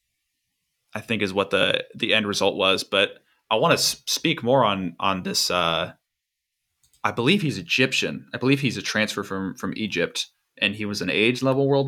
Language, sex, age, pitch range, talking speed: English, male, 20-39, 105-135 Hz, 190 wpm